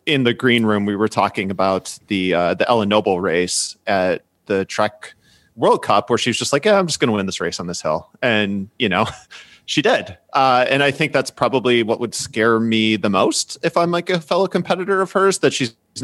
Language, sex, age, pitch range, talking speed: English, male, 30-49, 110-170 Hz, 230 wpm